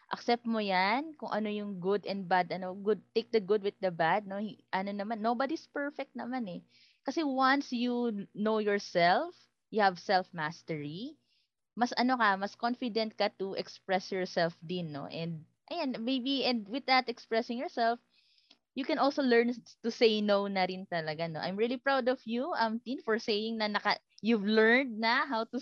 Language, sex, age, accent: Filipino, female, 20-39, native